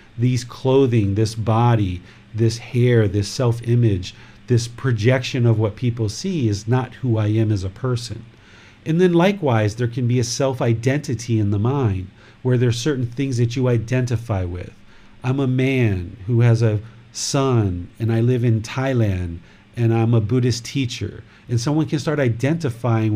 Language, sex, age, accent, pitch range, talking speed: English, male, 40-59, American, 110-135 Hz, 165 wpm